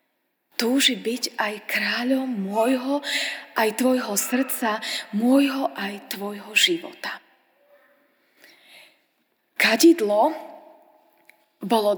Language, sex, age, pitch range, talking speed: Slovak, female, 20-39, 225-300 Hz, 70 wpm